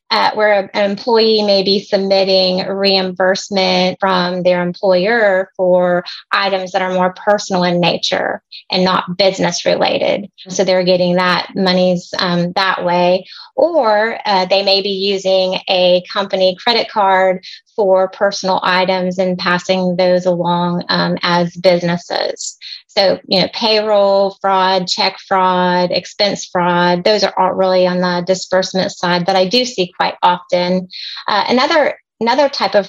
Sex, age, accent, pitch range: female, 30-49, American, 185-200 Hz